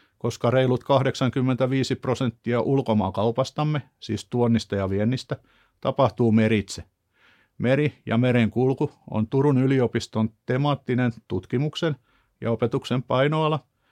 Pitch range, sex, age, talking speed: 110-145 Hz, male, 50-69, 95 wpm